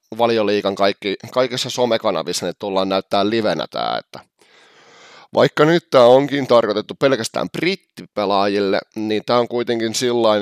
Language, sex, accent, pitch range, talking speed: Finnish, male, native, 95-120 Hz, 120 wpm